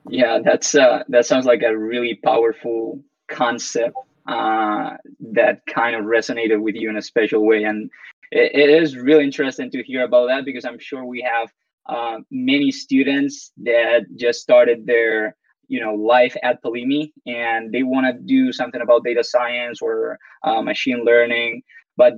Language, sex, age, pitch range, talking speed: English, male, 20-39, 120-155 Hz, 165 wpm